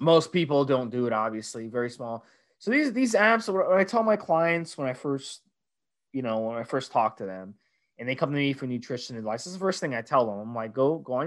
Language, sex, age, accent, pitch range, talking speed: English, male, 20-39, American, 130-190 Hz, 260 wpm